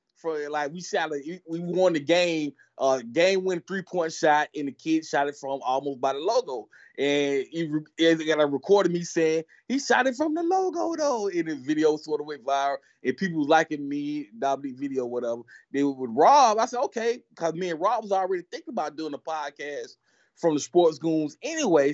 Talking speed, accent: 210 wpm, American